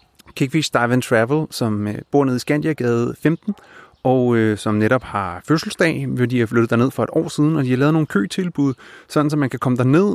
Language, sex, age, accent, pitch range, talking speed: Danish, male, 30-49, native, 120-155 Hz, 220 wpm